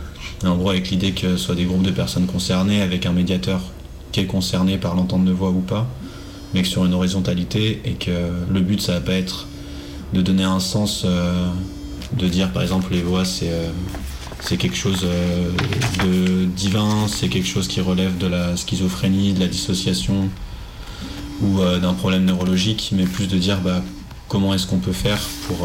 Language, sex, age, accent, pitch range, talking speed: French, male, 20-39, French, 85-95 Hz, 195 wpm